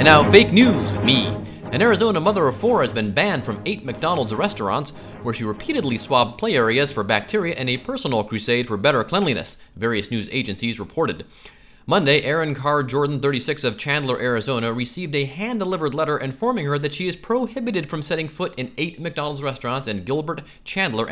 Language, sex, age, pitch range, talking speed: English, male, 30-49, 115-170 Hz, 180 wpm